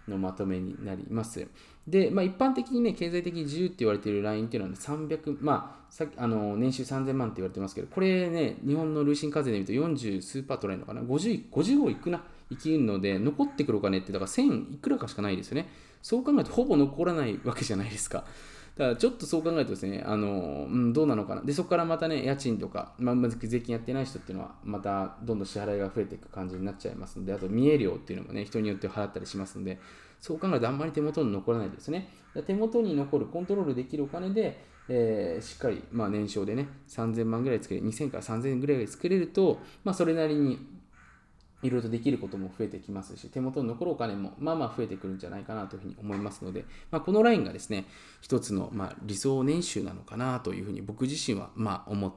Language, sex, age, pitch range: Japanese, male, 20-39, 100-155 Hz